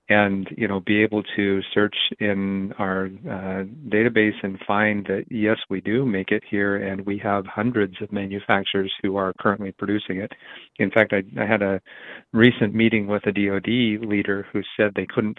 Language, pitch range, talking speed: English, 95-105 Hz, 185 wpm